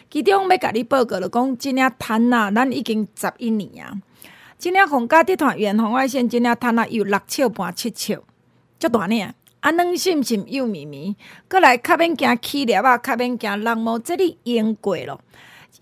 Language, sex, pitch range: Chinese, female, 215-280 Hz